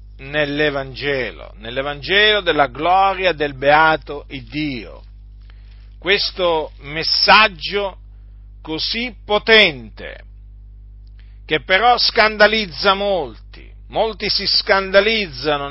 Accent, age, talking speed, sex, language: native, 50-69, 70 wpm, male, Italian